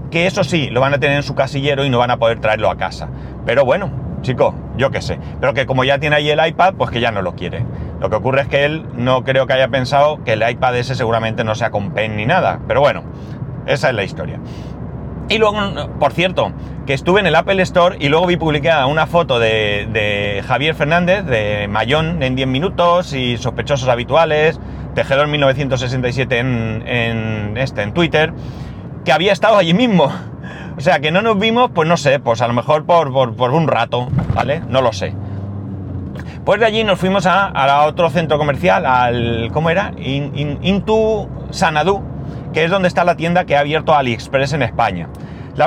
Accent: Spanish